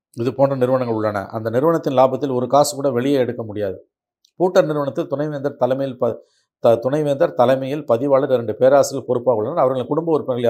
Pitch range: 120-160 Hz